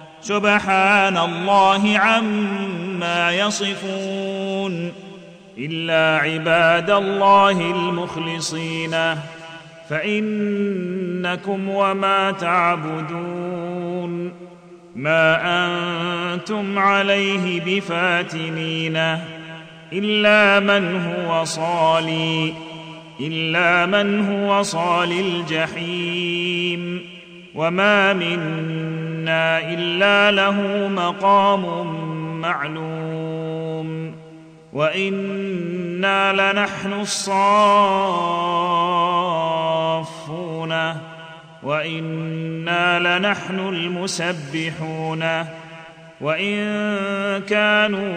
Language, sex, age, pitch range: Arabic, male, 40-59, 160-195 Hz